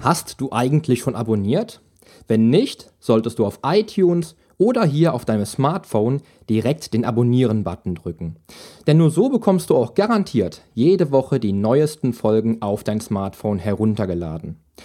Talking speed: 145 wpm